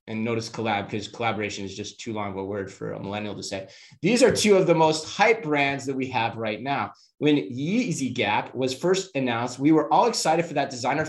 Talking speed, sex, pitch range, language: 235 wpm, male, 125-170 Hz, English